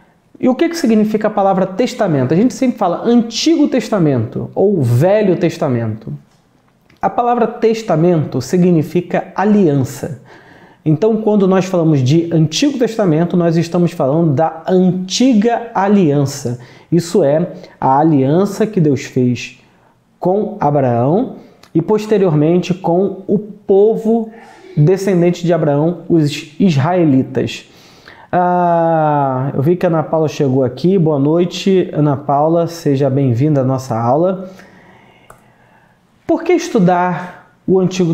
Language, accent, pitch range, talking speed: Portuguese, Brazilian, 155-210 Hz, 120 wpm